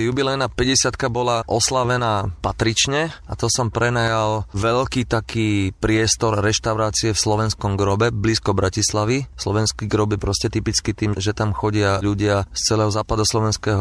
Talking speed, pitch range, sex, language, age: 135 wpm, 105-120 Hz, male, Slovak, 30-49